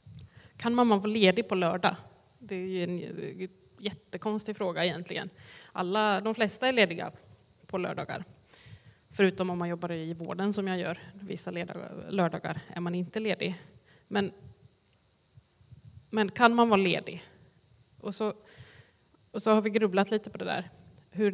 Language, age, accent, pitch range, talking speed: Swedish, 20-39, native, 170-205 Hz, 150 wpm